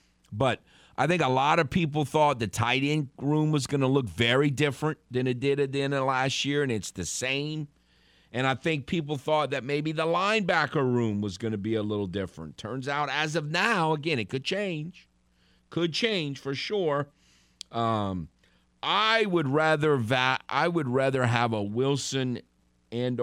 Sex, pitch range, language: male, 100-145 Hz, English